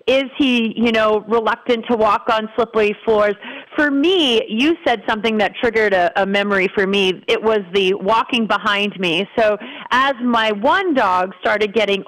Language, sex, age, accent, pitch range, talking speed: English, female, 40-59, American, 210-275 Hz, 175 wpm